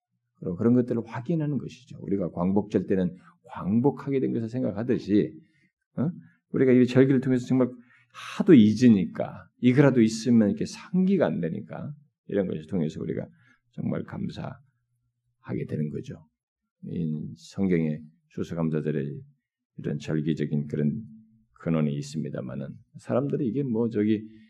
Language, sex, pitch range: Korean, male, 85-125 Hz